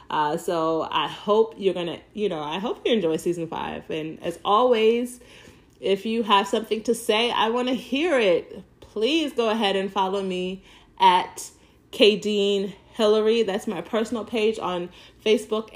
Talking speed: 160 wpm